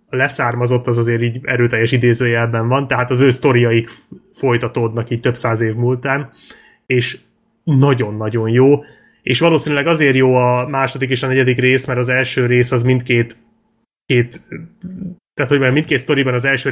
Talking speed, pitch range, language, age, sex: 160 wpm, 115-130 Hz, Hungarian, 30-49, male